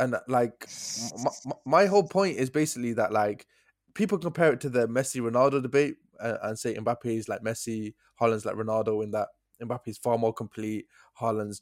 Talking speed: 175 wpm